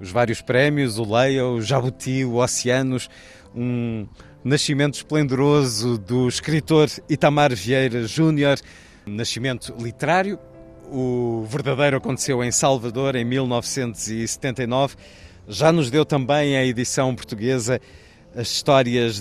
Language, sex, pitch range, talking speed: Portuguese, male, 120-145 Hz, 110 wpm